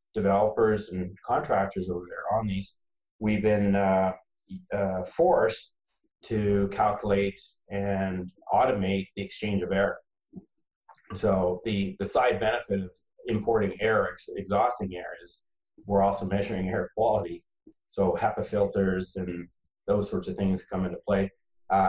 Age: 30-49